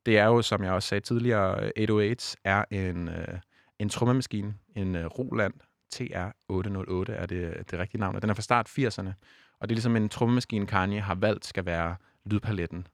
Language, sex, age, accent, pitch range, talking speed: Danish, male, 30-49, native, 95-115 Hz, 195 wpm